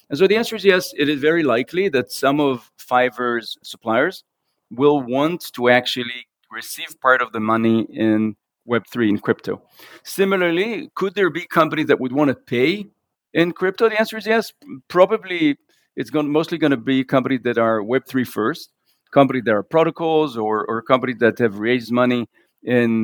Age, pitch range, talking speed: 50-69, 120-160 Hz, 175 wpm